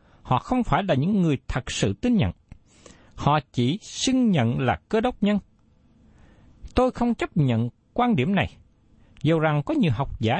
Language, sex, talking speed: Vietnamese, male, 180 wpm